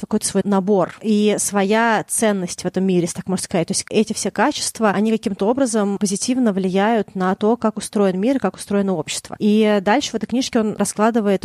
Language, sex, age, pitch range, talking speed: Russian, female, 30-49, 180-220 Hz, 195 wpm